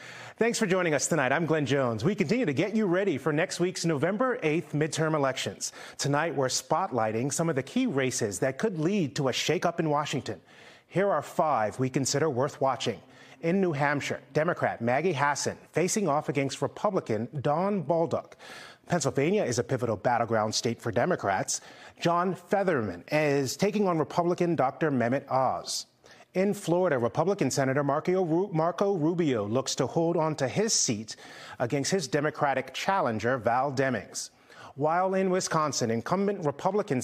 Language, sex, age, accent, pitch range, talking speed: English, male, 30-49, American, 130-180 Hz, 155 wpm